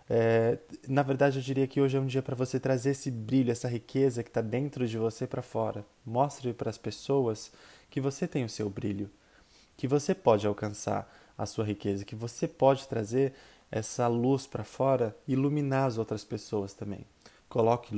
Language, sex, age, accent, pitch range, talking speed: Portuguese, male, 20-39, Brazilian, 105-130 Hz, 185 wpm